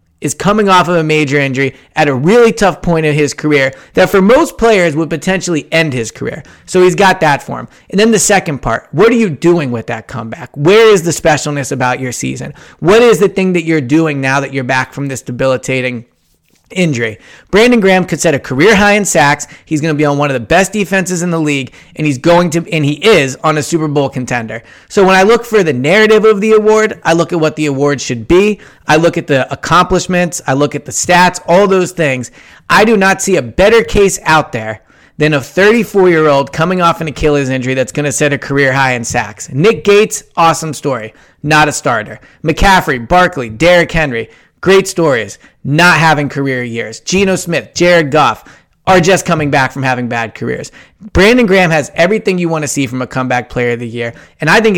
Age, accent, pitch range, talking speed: 30-49, American, 135-180 Hz, 225 wpm